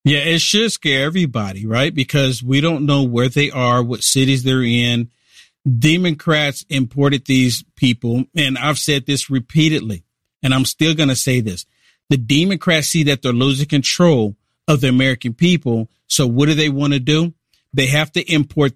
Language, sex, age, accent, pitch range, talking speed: English, male, 50-69, American, 135-180 Hz, 175 wpm